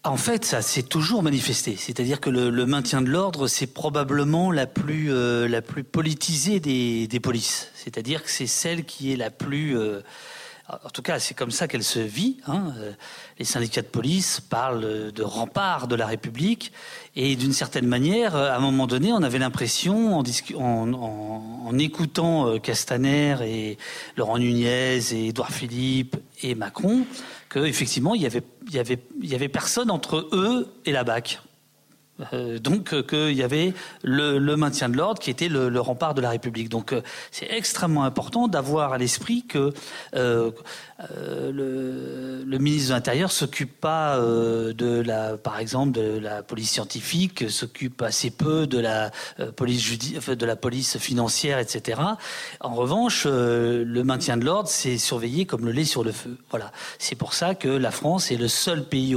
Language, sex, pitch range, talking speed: French, male, 120-155 Hz, 180 wpm